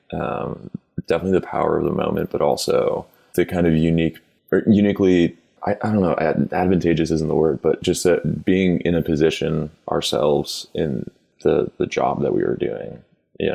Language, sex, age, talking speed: English, male, 20-39, 180 wpm